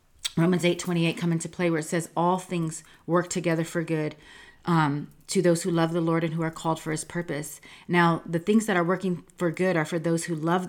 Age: 30-49